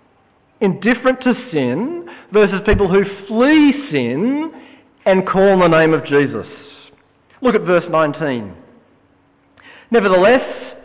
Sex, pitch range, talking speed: male, 155-220 Hz, 110 wpm